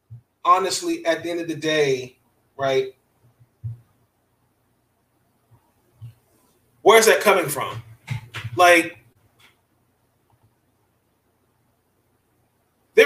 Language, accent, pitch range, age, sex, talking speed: English, American, 120-200 Hz, 30-49, male, 70 wpm